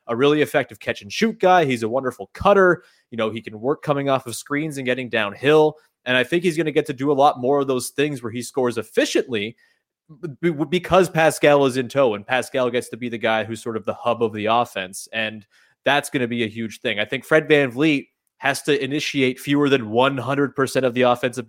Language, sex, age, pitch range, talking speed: English, male, 20-39, 120-150 Hz, 225 wpm